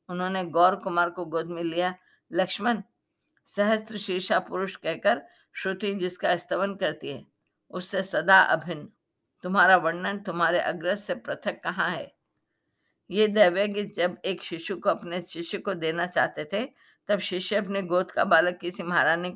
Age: 50-69